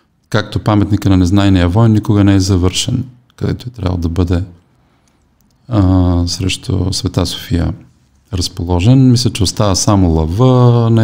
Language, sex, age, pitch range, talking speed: Bulgarian, male, 40-59, 95-115 Hz, 135 wpm